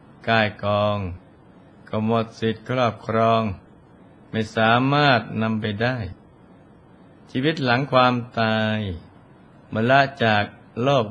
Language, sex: Thai, male